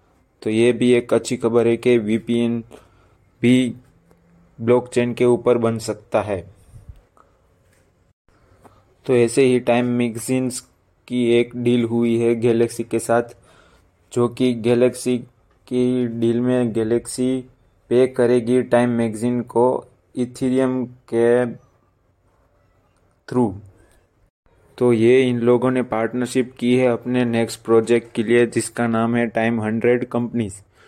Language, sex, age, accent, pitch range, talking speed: Hindi, male, 20-39, native, 110-125 Hz, 120 wpm